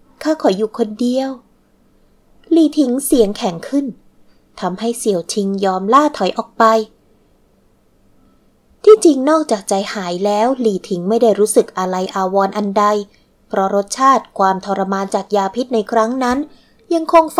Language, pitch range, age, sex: Thai, 195-250 Hz, 20-39, female